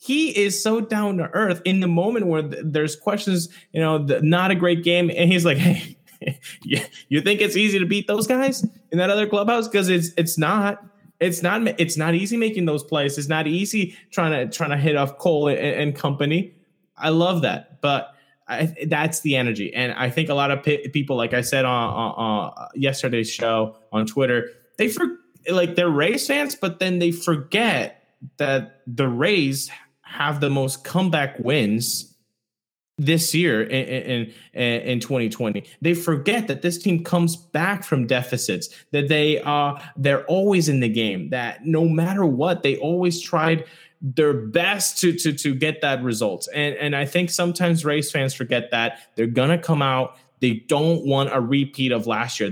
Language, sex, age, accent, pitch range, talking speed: English, male, 20-39, American, 135-180 Hz, 190 wpm